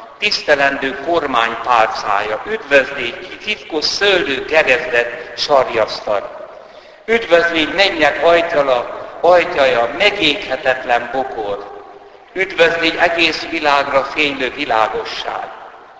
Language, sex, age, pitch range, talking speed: Hungarian, male, 60-79, 140-180 Hz, 70 wpm